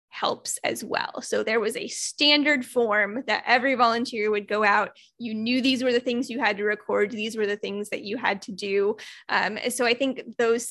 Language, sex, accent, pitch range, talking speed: English, female, American, 225-270 Hz, 225 wpm